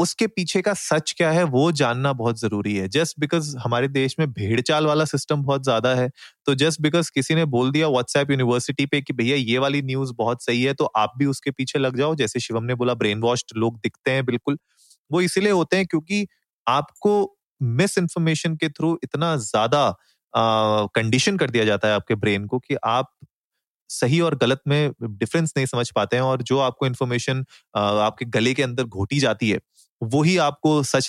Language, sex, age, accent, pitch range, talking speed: Hindi, male, 30-49, native, 115-150 Hz, 200 wpm